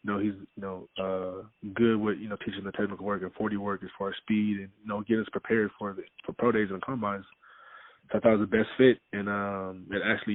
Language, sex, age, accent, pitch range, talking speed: English, male, 20-39, American, 100-110 Hz, 275 wpm